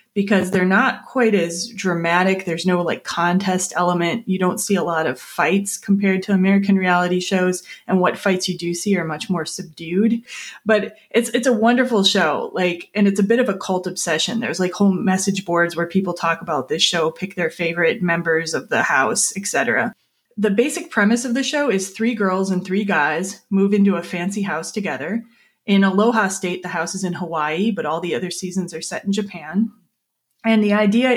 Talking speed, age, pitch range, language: 200 wpm, 20-39, 175-215 Hz, English